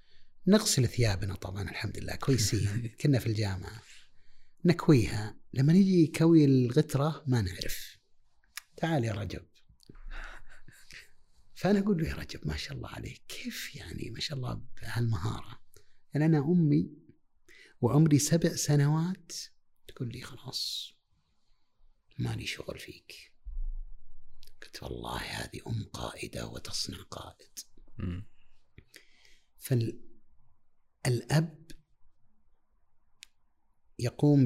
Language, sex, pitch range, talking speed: Arabic, male, 105-155 Hz, 95 wpm